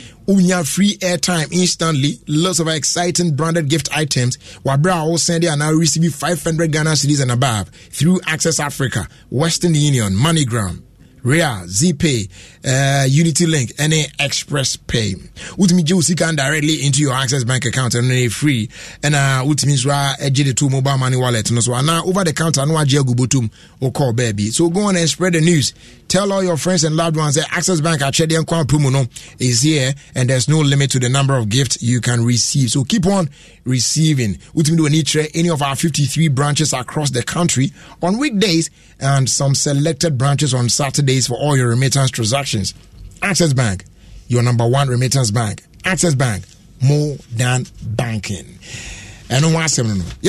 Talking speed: 160 wpm